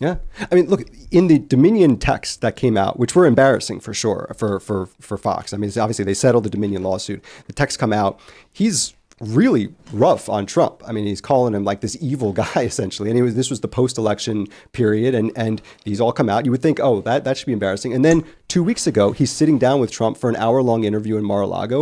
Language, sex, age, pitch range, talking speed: English, male, 30-49, 105-145 Hz, 235 wpm